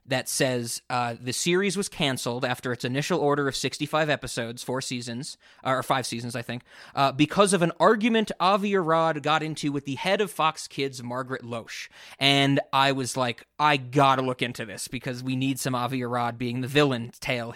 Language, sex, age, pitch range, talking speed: English, male, 20-39, 130-160 Hz, 195 wpm